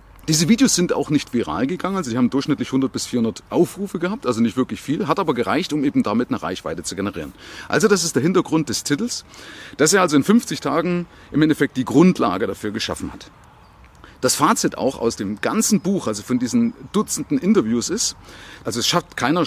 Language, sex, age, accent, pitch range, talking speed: German, male, 30-49, German, 125-200 Hz, 205 wpm